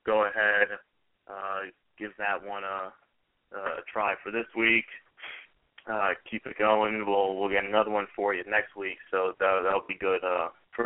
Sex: male